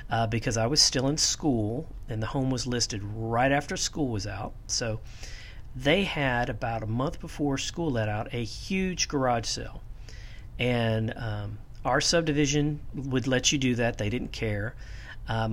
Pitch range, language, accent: 110-140 Hz, English, American